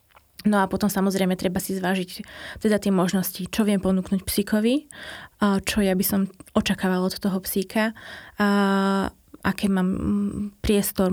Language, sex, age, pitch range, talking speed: Slovak, female, 20-39, 190-210 Hz, 140 wpm